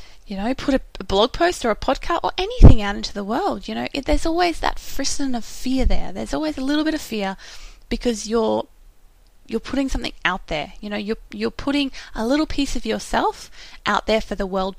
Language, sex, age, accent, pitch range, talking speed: English, female, 20-39, Australian, 205-275 Hz, 220 wpm